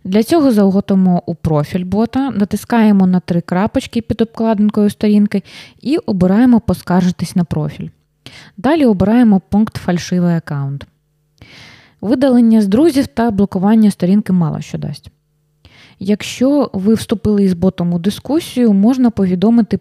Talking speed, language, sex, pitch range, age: 125 wpm, Ukrainian, female, 170-215 Hz, 20-39